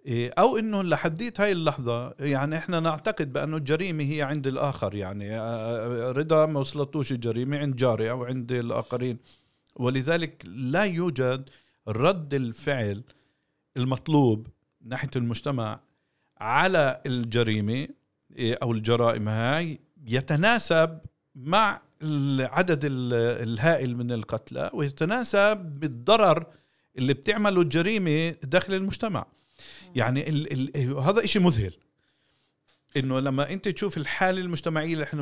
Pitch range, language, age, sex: 120-160 Hz, Arabic, 50-69, male